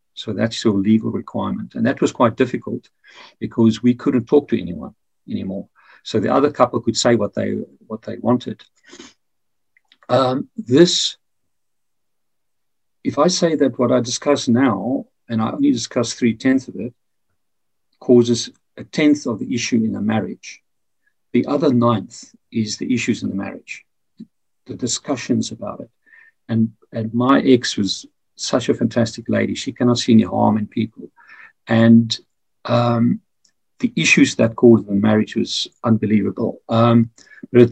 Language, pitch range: English, 115-140 Hz